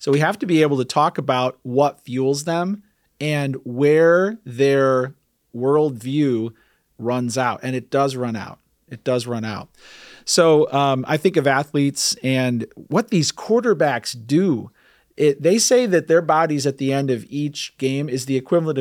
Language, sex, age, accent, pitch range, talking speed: English, male, 40-59, American, 125-165 Hz, 165 wpm